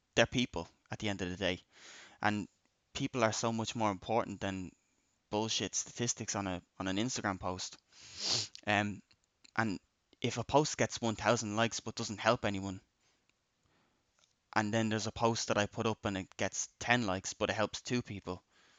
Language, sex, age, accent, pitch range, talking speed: English, male, 10-29, Irish, 95-110 Hz, 175 wpm